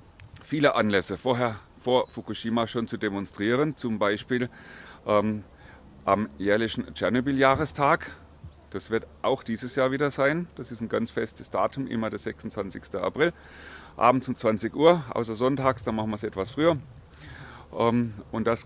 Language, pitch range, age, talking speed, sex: German, 100-130 Hz, 30-49, 150 wpm, male